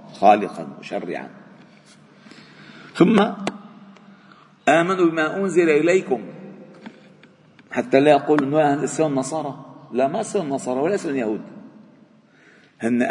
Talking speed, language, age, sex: 95 wpm, Arabic, 50-69, male